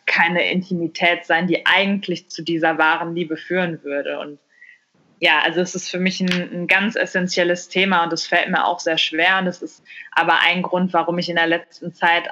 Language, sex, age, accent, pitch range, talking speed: German, female, 20-39, German, 165-180 Hz, 205 wpm